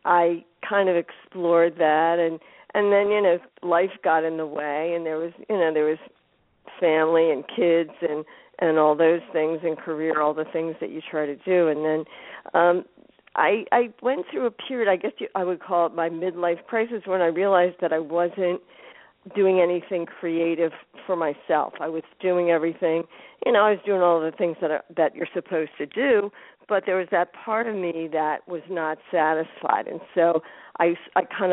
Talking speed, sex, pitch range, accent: 200 wpm, female, 160-185 Hz, American